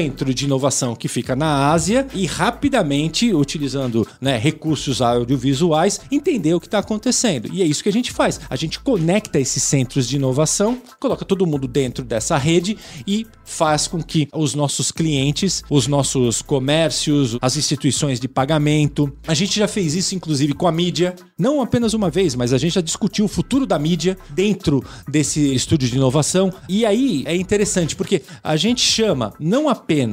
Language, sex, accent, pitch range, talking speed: English, male, Brazilian, 135-195 Hz, 175 wpm